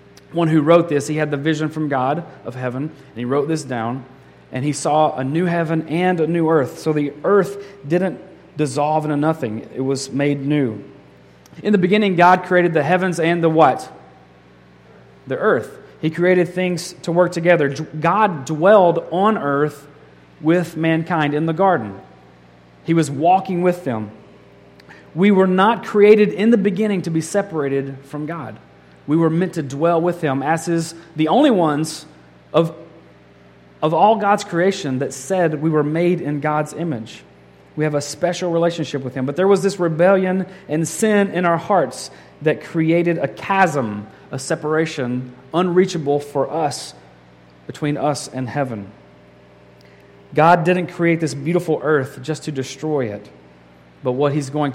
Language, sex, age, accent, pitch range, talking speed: English, male, 30-49, American, 135-175 Hz, 165 wpm